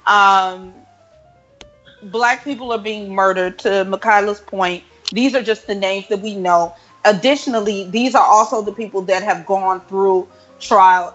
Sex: female